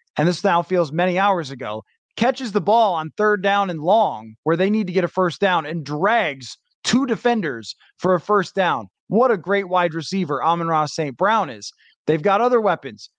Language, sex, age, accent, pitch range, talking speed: English, male, 20-39, American, 165-215 Hz, 205 wpm